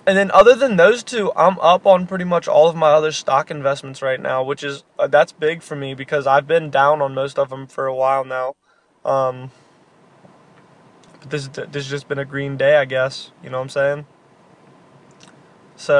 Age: 20-39